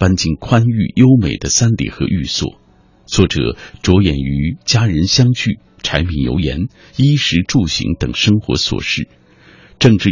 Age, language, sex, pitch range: 50-69, Chinese, male, 75-115 Hz